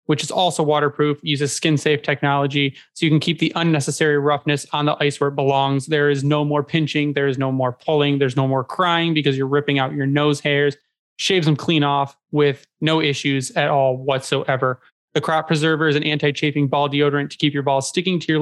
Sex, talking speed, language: male, 215 wpm, English